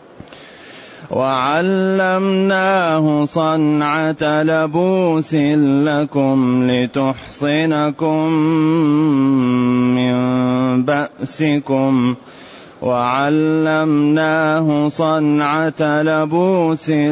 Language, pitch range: Arabic, 130-155 Hz